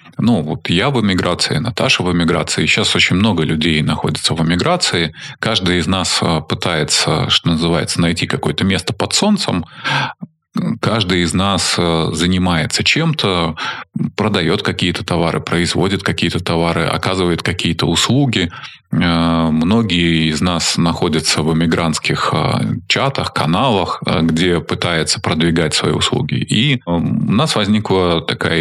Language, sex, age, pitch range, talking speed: Russian, male, 20-39, 85-115 Hz, 120 wpm